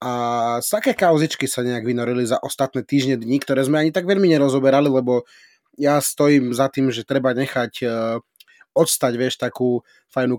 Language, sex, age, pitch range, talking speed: Slovak, male, 30-49, 125-140 Hz, 160 wpm